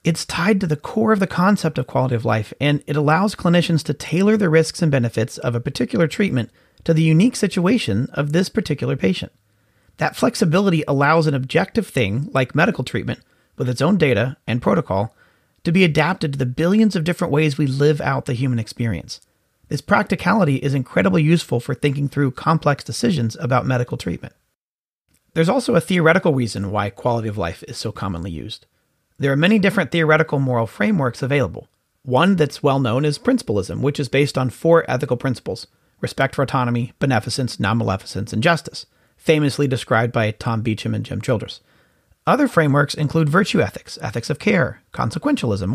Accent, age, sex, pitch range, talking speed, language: American, 30-49, male, 125-165 Hz, 175 wpm, English